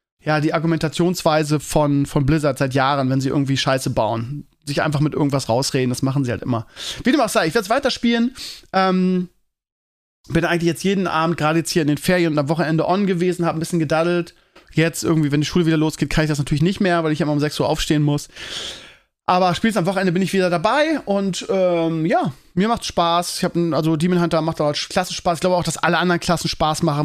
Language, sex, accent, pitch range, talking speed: German, male, German, 150-180 Hz, 235 wpm